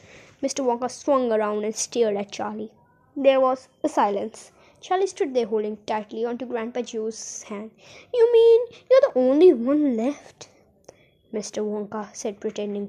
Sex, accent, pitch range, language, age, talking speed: female, native, 220-295 Hz, Hindi, 20-39, 150 wpm